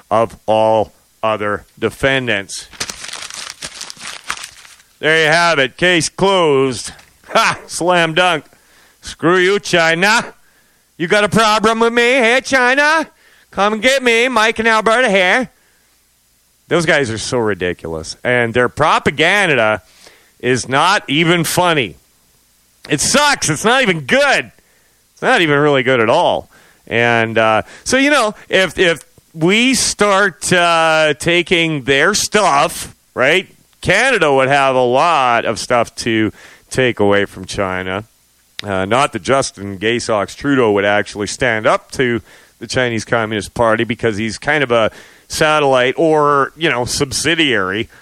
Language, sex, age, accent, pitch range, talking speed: English, male, 40-59, American, 110-170 Hz, 135 wpm